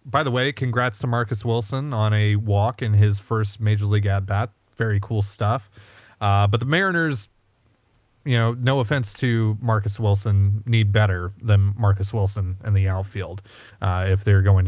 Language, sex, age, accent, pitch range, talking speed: English, male, 30-49, American, 105-135 Hz, 175 wpm